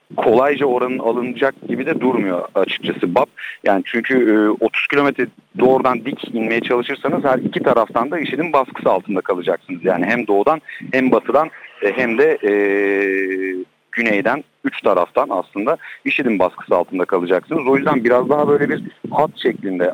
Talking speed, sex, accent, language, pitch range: 145 wpm, male, native, Turkish, 105-150 Hz